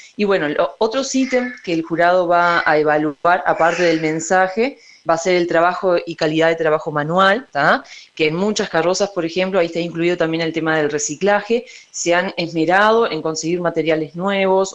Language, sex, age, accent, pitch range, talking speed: Spanish, female, 20-39, Argentinian, 160-200 Hz, 185 wpm